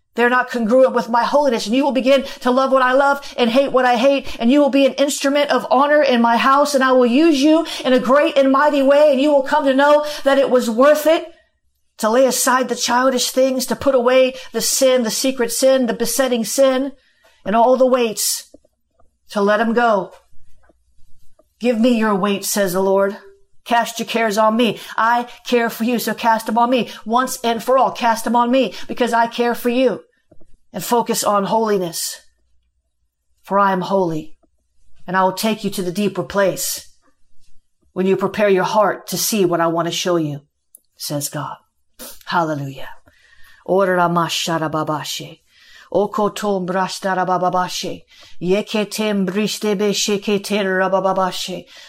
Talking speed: 170 wpm